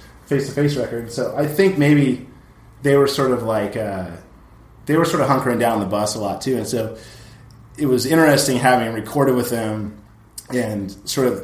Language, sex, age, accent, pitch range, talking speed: English, male, 30-49, American, 100-130 Hz, 190 wpm